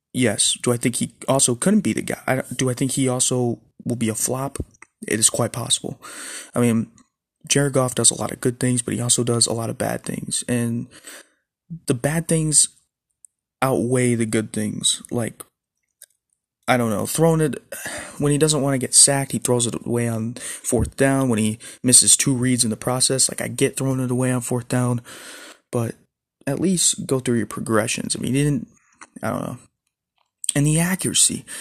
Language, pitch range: English, 115-135 Hz